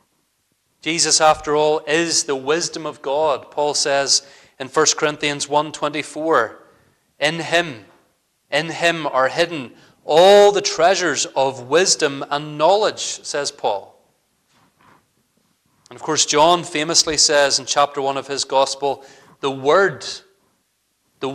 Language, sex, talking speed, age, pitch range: English, male, 125 wpm, 30-49, 135-155 Hz